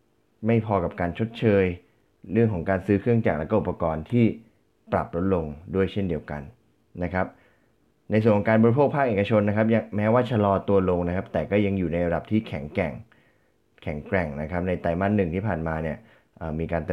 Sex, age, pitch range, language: male, 20-39, 85-105 Hz, Thai